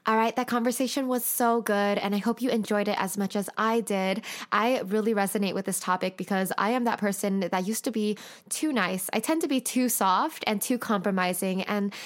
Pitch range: 190-230 Hz